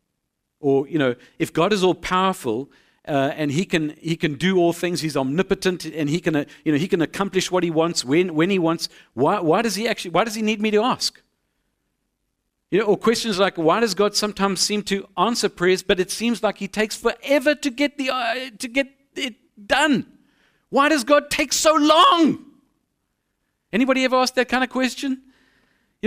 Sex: male